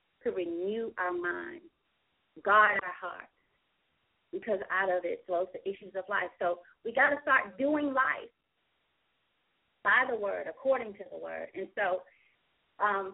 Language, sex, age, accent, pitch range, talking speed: English, female, 30-49, American, 195-240 Hz, 150 wpm